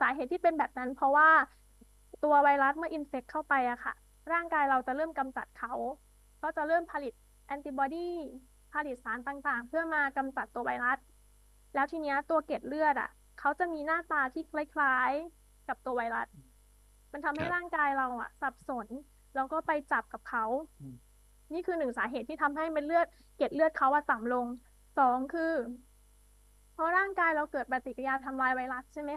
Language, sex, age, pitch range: English, female, 20-39, 260-315 Hz